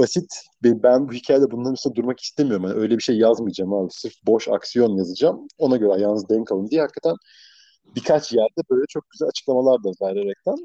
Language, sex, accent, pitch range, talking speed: Turkish, male, native, 110-145 Hz, 190 wpm